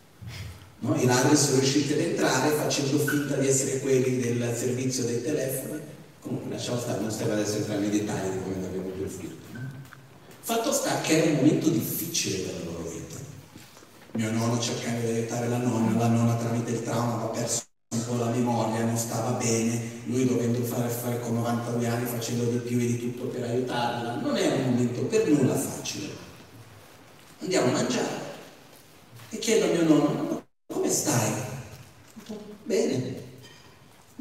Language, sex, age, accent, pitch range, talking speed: Italian, male, 40-59, native, 115-160 Hz, 165 wpm